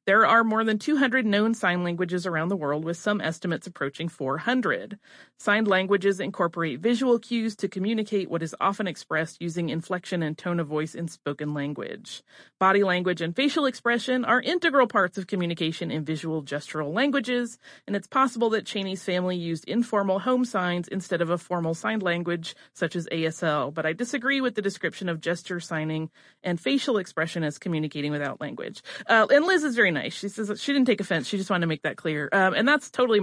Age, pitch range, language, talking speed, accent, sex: 30-49, 170-225 Hz, English, 195 wpm, American, female